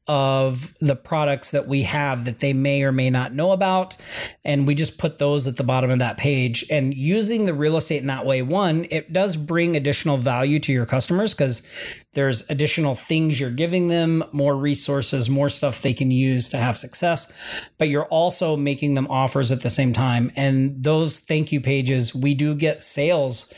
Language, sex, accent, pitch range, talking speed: English, male, American, 135-150 Hz, 200 wpm